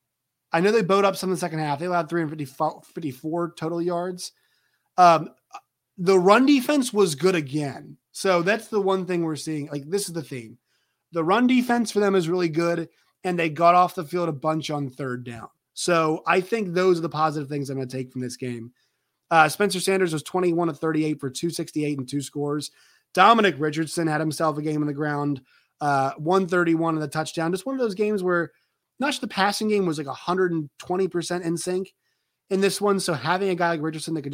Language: English